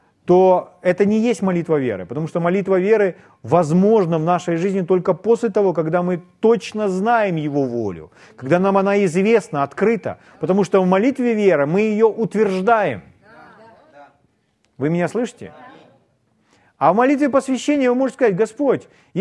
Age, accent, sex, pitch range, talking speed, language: 40-59, native, male, 155-230 Hz, 145 wpm, Russian